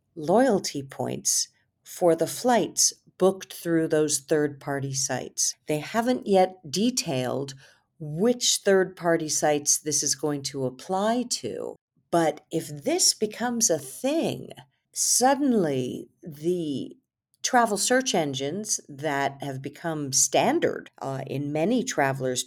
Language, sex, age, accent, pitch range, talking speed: English, female, 50-69, American, 140-195 Hz, 110 wpm